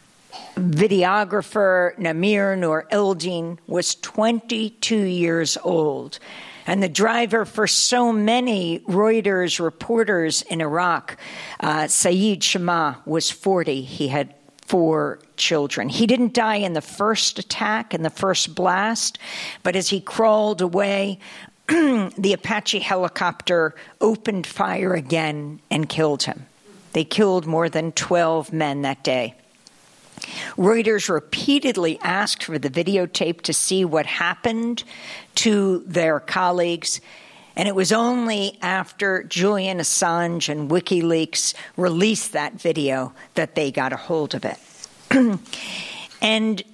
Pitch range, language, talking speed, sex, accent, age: 170-215 Hz, English, 120 wpm, female, American, 50-69